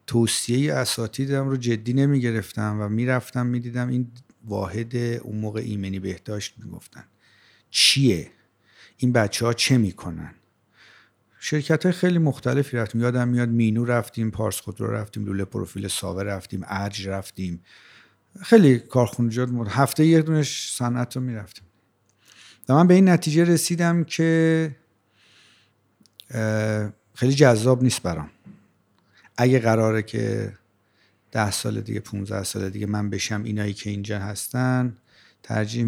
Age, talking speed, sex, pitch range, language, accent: 50-69, 125 wpm, male, 100-120 Hz, English, Canadian